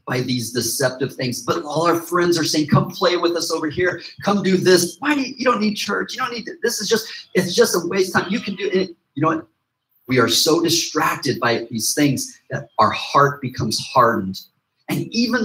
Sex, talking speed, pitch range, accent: male, 230 wpm, 130-190 Hz, American